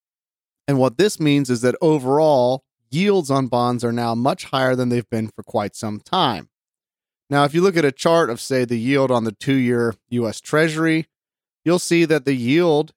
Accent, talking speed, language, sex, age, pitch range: American, 195 wpm, English, male, 30-49, 125-160 Hz